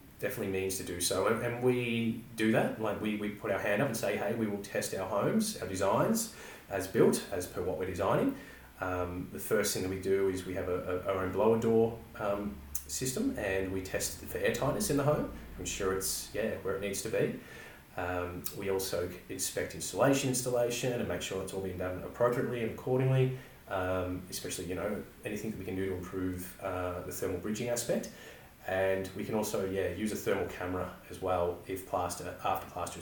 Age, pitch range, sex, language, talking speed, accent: 30-49, 90-115 Hz, male, English, 210 wpm, Australian